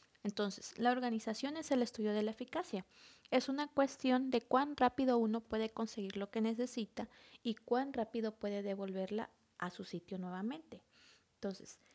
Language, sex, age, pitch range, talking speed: Spanish, female, 30-49, 210-255 Hz, 155 wpm